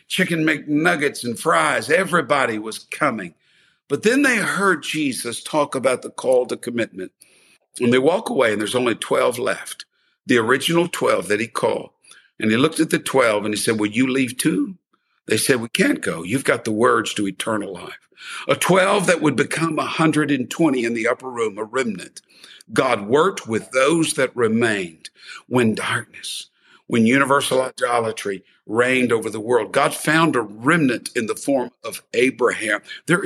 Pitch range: 125-190 Hz